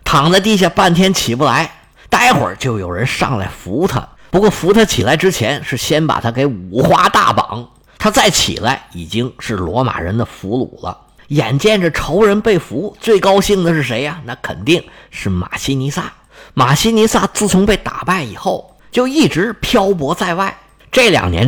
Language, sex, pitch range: Chinese, male, 120-185 Hz